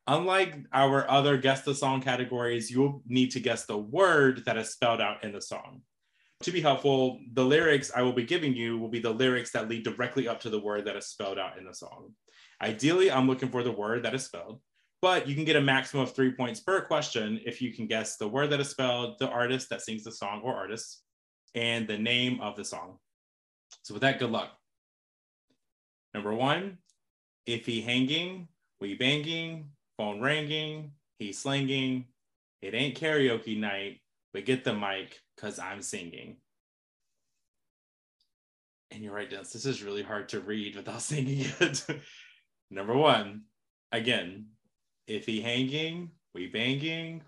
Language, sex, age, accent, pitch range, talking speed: English, male, 20-39, American, 105-140 Hz, 175 wpm